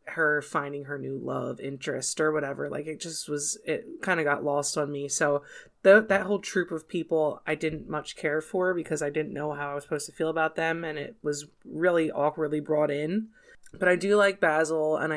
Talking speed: 220 wpm